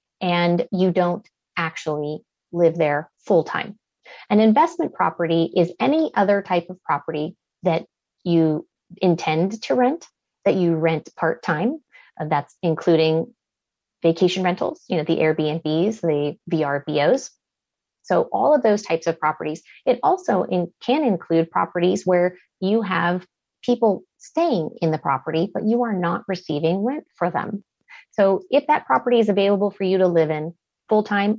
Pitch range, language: 165-220 Hz, English